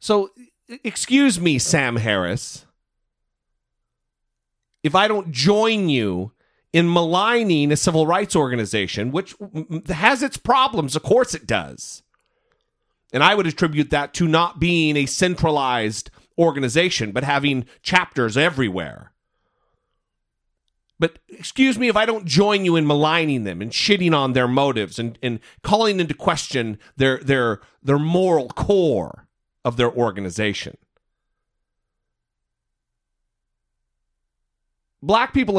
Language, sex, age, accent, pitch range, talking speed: English, male, 40-59, American, 120-180 Hz, 120 wpm